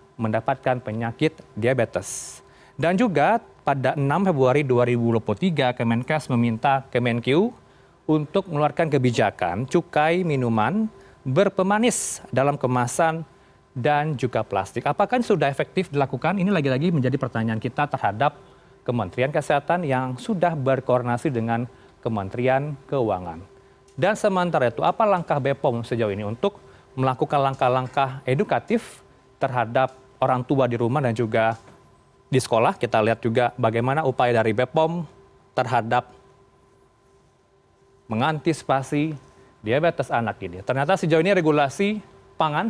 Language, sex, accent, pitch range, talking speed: Indonesian, male, native, 125-160 Hz, 110 wpm